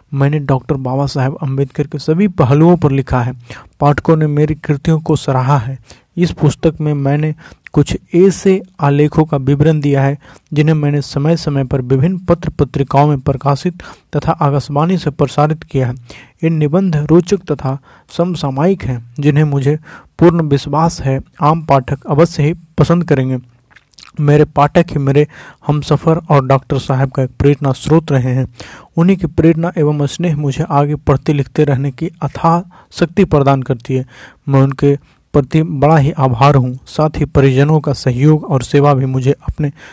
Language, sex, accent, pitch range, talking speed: Hindi, male, native, 140-160 Hz, 160 wpm